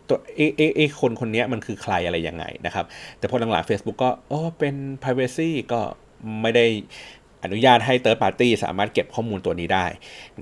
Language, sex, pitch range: Thai, male, 110-150 Hz